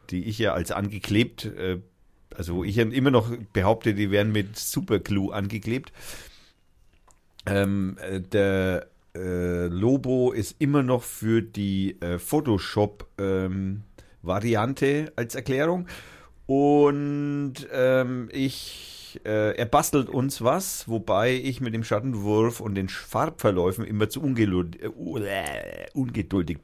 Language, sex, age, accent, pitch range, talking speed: German, male, 50-69, German, 90-125 Hz, 120 wpm